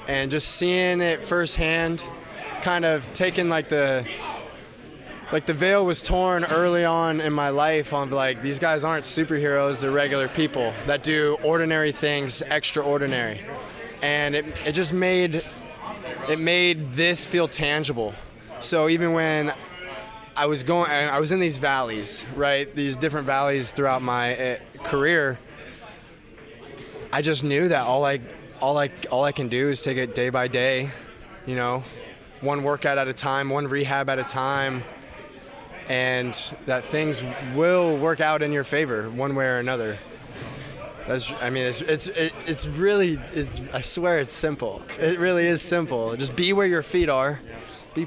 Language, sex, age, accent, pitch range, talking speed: English, male, 20-39, American, 135-160 Hz, 160 wpm